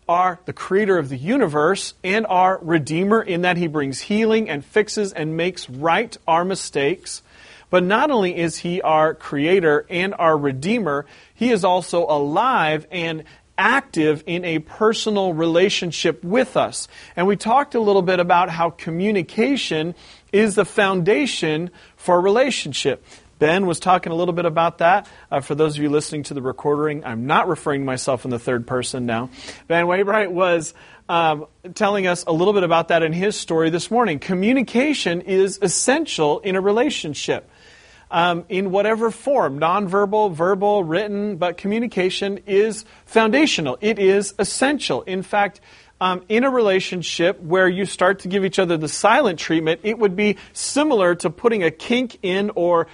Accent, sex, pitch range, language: American, male, 165-205 Hz, English